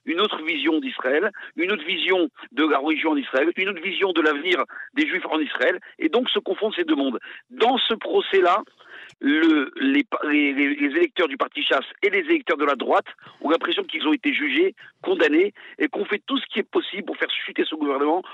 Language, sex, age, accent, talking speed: French, male, 50-69, French, 205 wpm